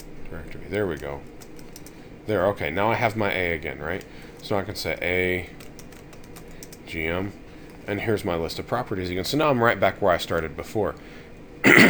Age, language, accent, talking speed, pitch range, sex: 40-59, English, American, 170 wpm, 80-105 Hz, male